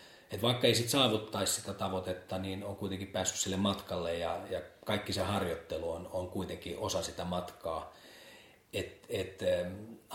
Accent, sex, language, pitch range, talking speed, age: native, male, Finnish, 90-110 Hz, 160 wpm, 40-59